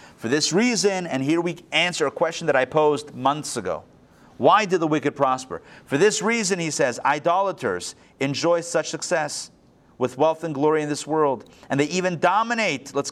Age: 30-49